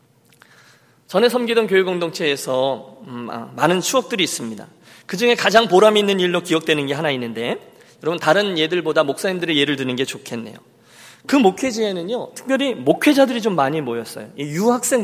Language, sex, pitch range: Korean, male, 145-240 Hz